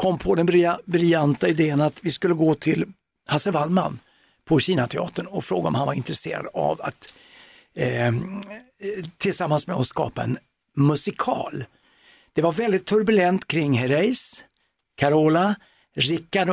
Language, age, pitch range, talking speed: Swedish, 60-79, 150-195 Hz, 135 wpm